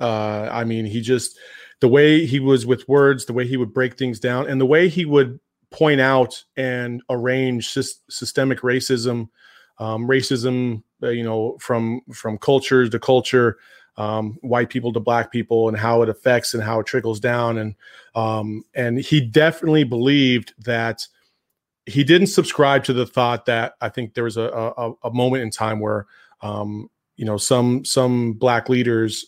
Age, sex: 30-49, male